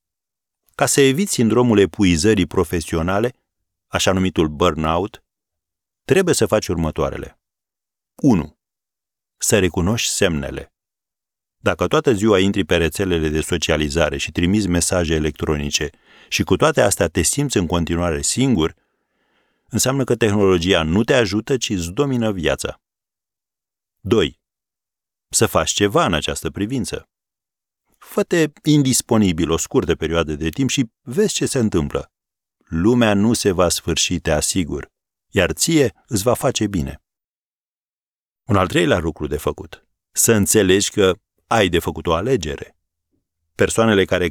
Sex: male